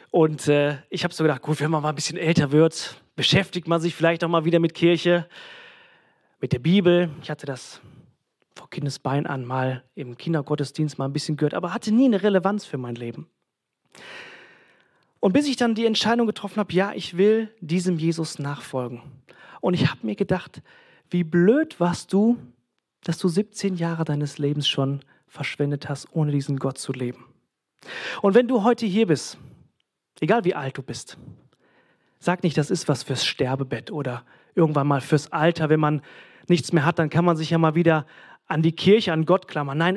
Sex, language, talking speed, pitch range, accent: male, German, 190 wpm, 150-195 Hz, German